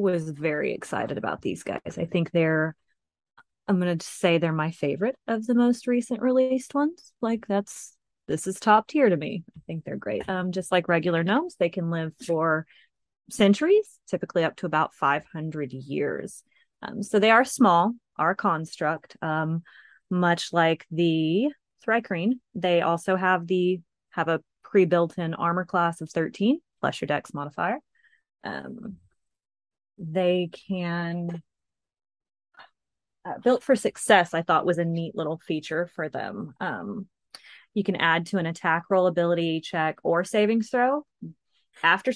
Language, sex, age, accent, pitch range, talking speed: English, female, 30-49, American, 165-205 Hz, 155 wpm